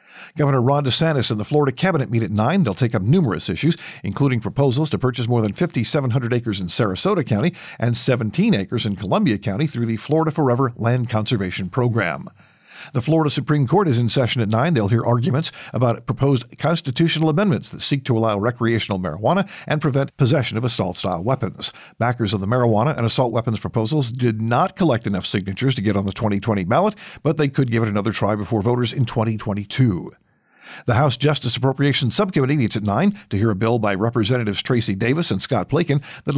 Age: 50-69